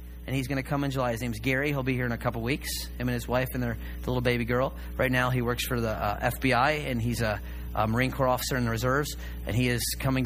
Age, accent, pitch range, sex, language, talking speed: 30-49, American, 110-185 Hz, male, English, 285 wpm